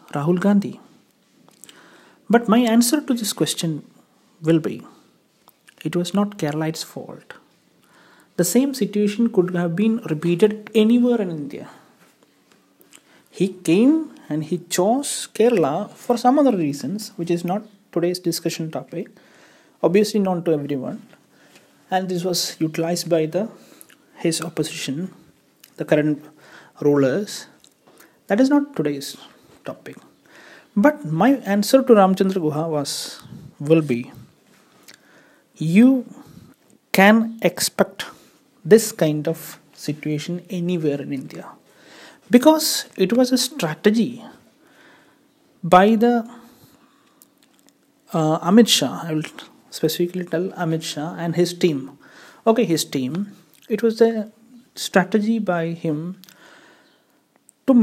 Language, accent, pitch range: Malayalam, native, 165-245 Hz